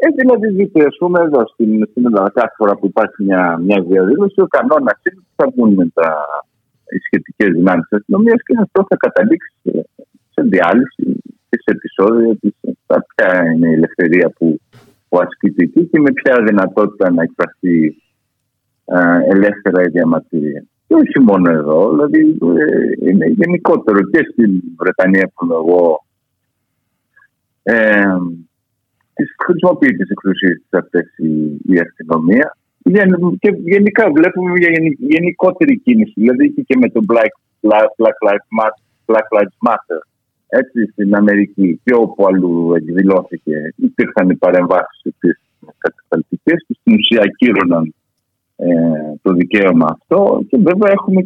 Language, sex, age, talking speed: Greek, male, 50-69, 135 wpm